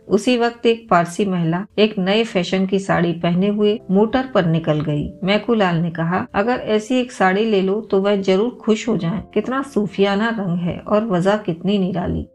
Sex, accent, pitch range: female, native, 180-225 Hz